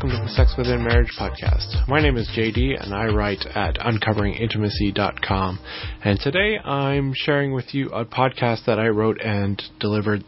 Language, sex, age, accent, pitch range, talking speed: English, male, 20-39, American, 100-120 Hz, 170 wpm